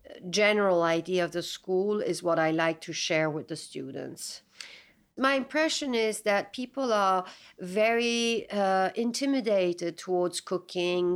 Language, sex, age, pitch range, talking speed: English, female, 50-69, 180-235 Hz, 135 wpm